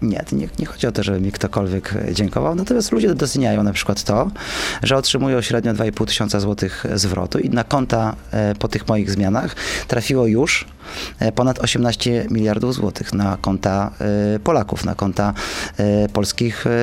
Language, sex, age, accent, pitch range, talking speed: Polish, male, 20-39, native, 100-125 Hz, 150 wpm